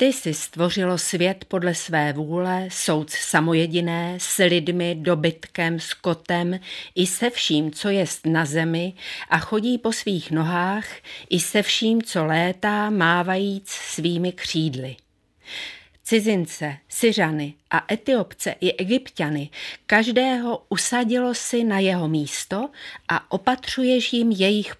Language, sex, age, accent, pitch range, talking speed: Czech, female, 40-59, native, 165-215 Hz, 120 wpm